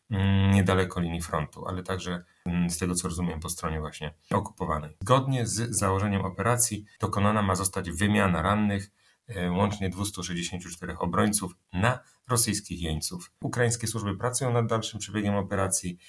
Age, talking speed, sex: 40-59, 130 wpm, male